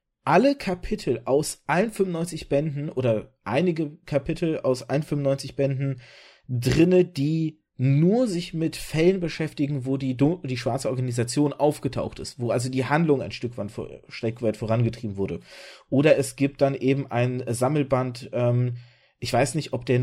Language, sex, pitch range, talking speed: German, male, 125-165 Hz, 140 wpm